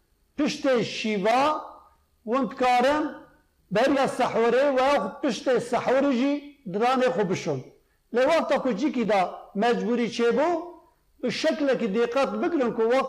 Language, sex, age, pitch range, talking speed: Turkish, male, 50-69, 210-265 Hz, 75 wpm